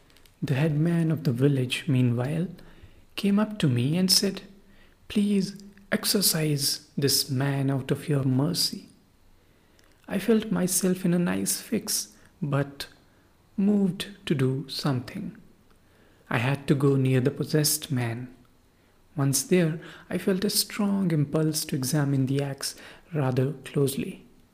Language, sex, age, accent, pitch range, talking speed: English, male, 50-69, Indian, 135-165 Hz, 130 wpm